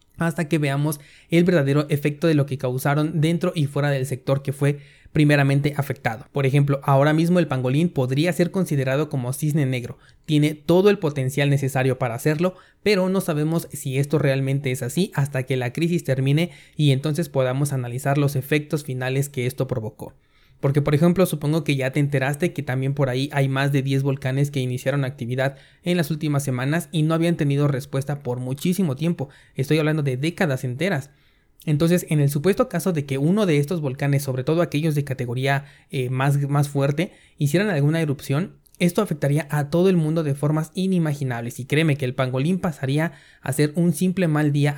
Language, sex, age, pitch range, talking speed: Spanish, male, 20-39, 135-160 Hz, 190 wpm